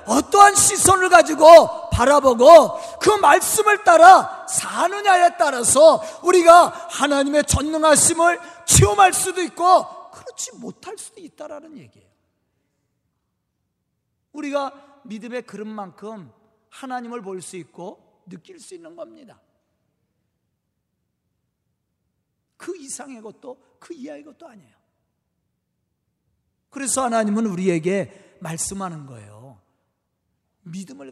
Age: 40-59